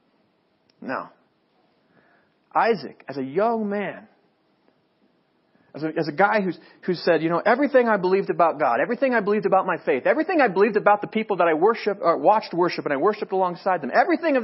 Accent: American